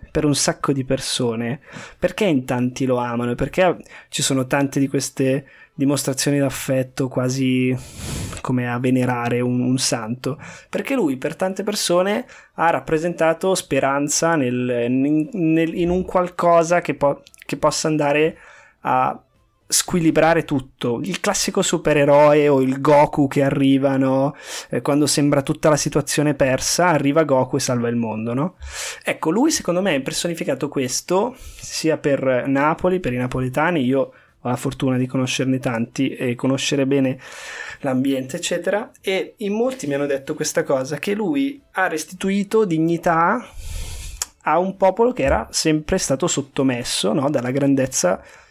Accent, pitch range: native, 130-170 Hz